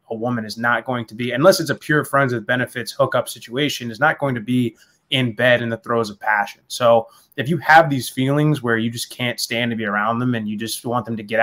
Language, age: English, 20-39